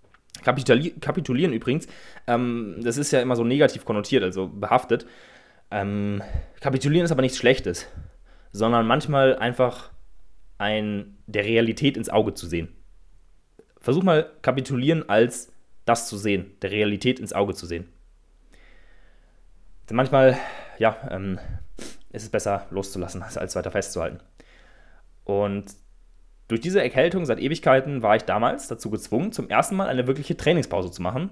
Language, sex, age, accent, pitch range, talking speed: German, male, 20-39, German, 100-140 Hz, 125 wpm